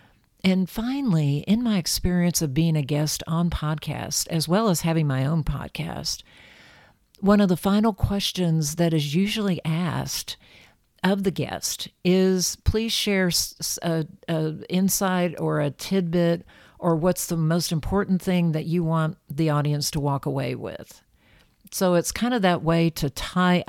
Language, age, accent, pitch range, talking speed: English, 50-69, American, 145-180 Hz, 155 wpm